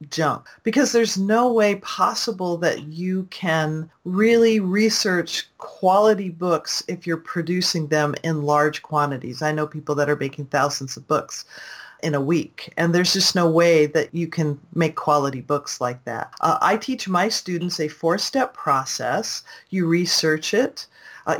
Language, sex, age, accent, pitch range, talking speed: English, female, 40-59, American, 155-185 Hz, 160 wpm